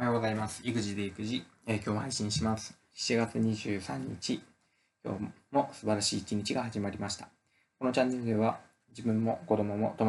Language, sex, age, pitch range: Japanese, male, 20-39, 100-115 Hz